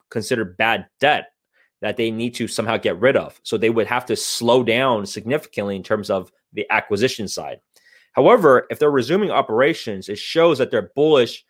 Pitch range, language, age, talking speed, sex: 100-120 Hz, English, 30-49, 185 wpm, male